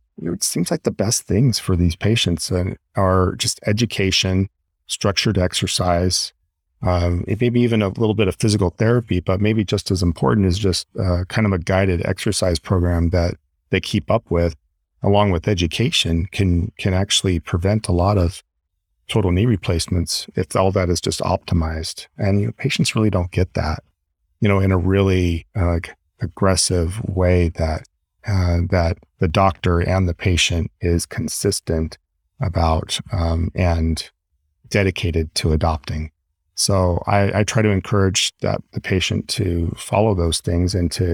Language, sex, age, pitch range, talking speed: English, male, 40-59, 85-105 Hz, 160 wpm